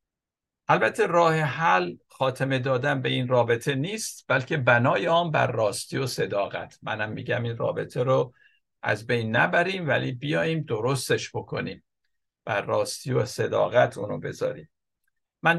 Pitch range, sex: 120-150 Hz, male